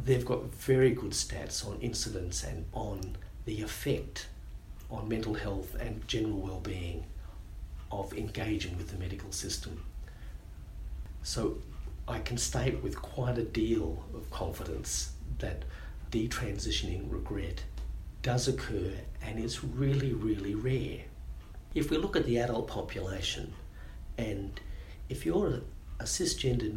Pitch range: 80-130 Hz